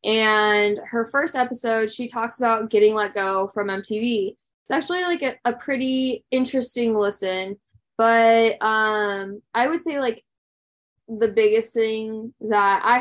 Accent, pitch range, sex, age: American, 200-235 Hz, female, 10-29